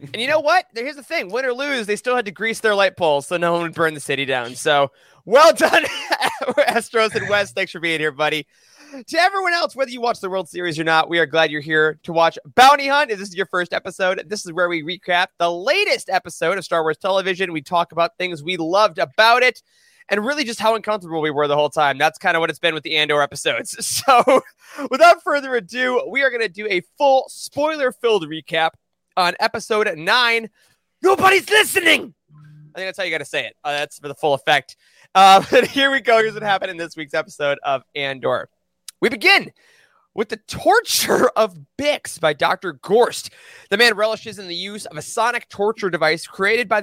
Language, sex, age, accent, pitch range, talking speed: English, male, 20-39, American, 165-250 Hz, 220 wpm